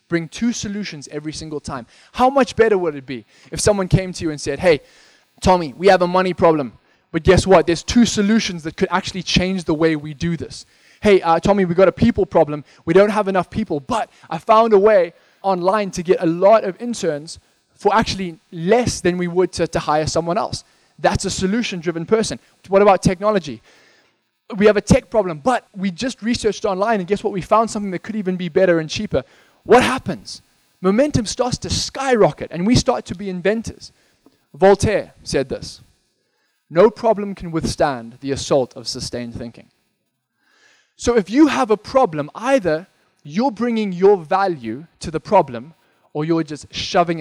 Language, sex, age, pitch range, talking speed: English, male, 20-39, 150-205 Hz, 190 wpm